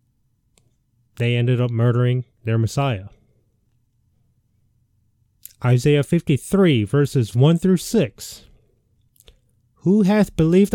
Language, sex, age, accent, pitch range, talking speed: English, male, 30-49, American, 115-160 Hz, 85 wpm